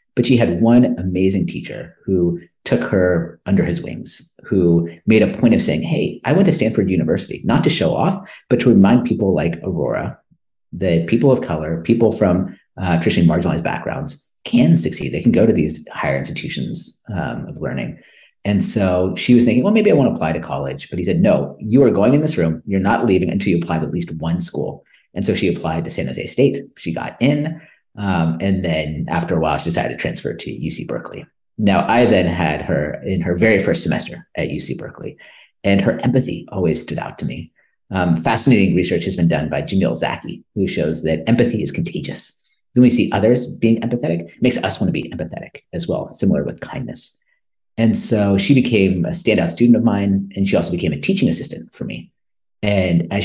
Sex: male